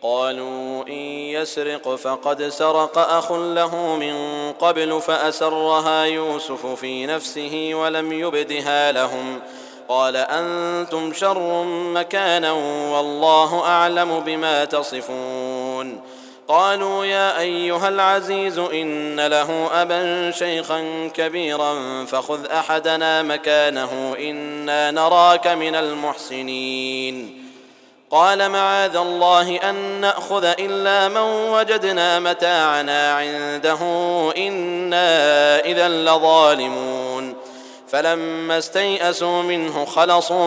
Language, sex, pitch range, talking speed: Arabic, male, 145-175 Hz, 85 wpm